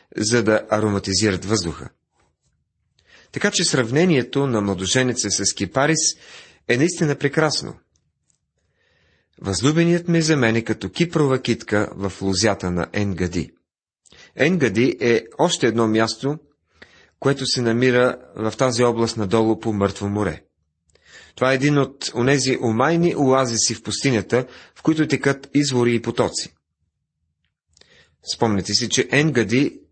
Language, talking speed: Bulgarian, 120 wpm